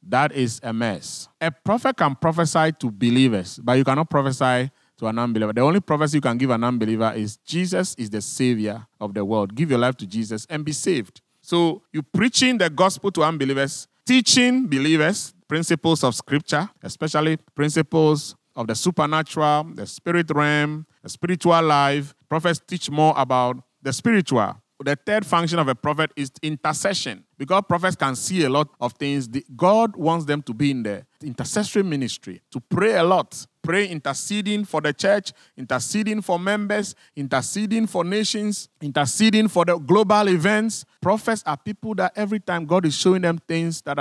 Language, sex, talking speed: English, male, 175 wpm